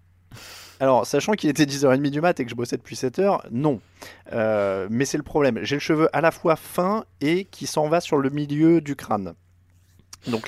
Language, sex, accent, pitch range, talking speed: French, male, French, 115-165 Hz, 205 wpm